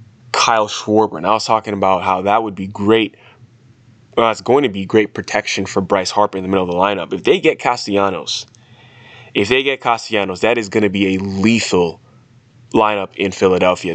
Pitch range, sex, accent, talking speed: 100-120 Hz, male, American, 200 wpm